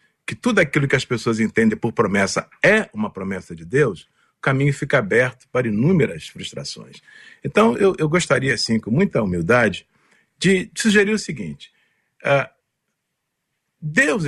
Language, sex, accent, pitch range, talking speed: Portuguese, male, Brazilian, 115-175 Hz, 150 wpm